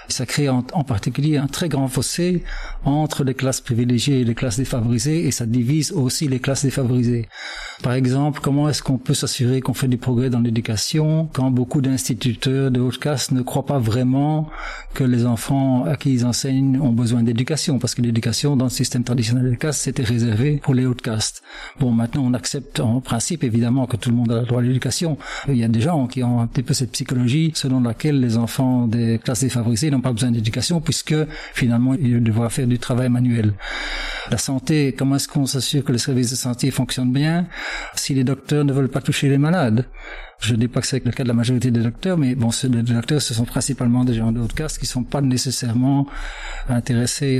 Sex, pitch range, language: male, 120-140 Hz, French